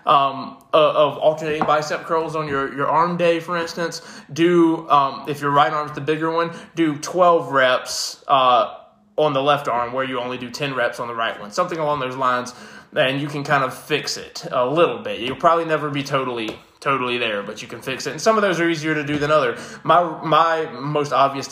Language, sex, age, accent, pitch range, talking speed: English, male, 20-39, American, 130-160 Hz, 225 wpm